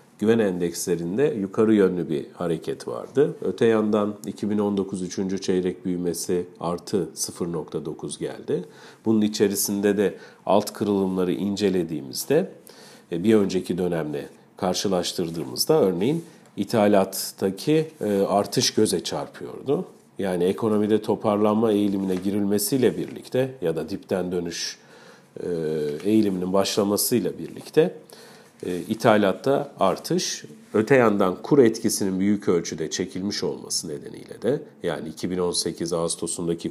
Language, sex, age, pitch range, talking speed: Turkish, male, 50-69, 90-105 Hz, 95 wpm